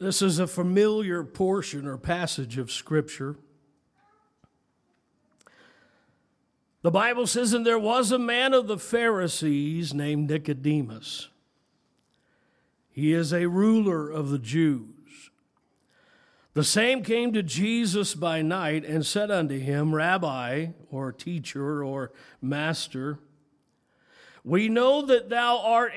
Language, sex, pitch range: English, male, 145-205 Hz